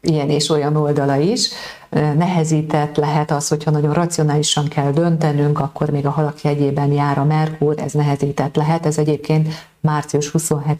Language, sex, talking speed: Hungarian, female, 150 wpm